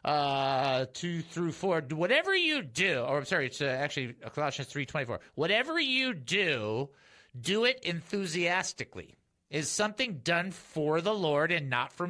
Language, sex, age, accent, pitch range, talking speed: English, male, 50-69, American, 145-205 Hz, 155 wpm